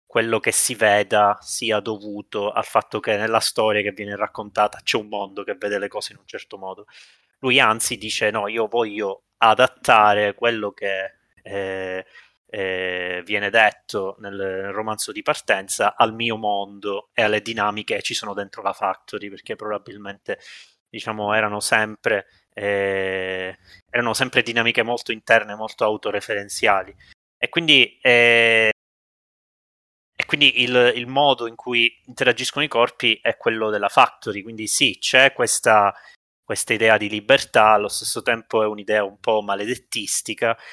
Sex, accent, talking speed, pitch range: male, native, 145 wpm, 100-115 Hz